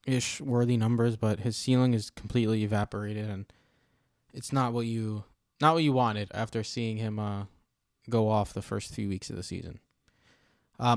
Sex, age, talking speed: male, 20-39, 175 wpm